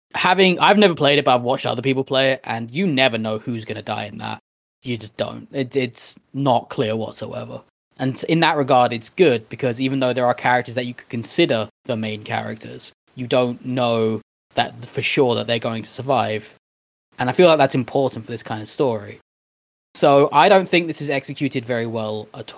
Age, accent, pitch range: 20-39, British, 110-140 Hz